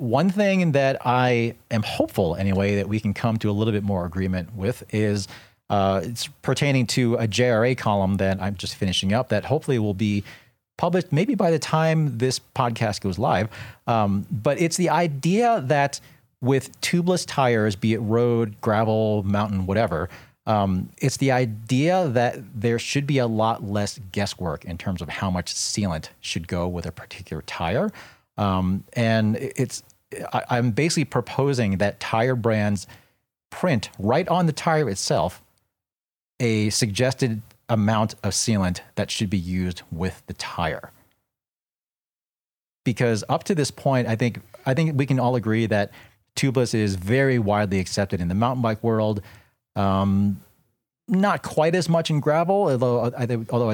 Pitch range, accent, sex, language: 100-130 Hz, American, male, English